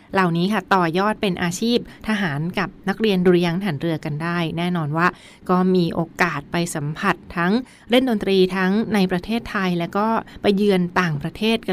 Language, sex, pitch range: Thai, female, 170-195 Hz